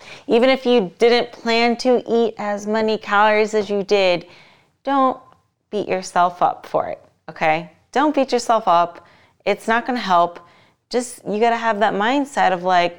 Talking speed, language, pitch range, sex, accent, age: 175 wpm, English, 175-215 Hz, female, American, 30-49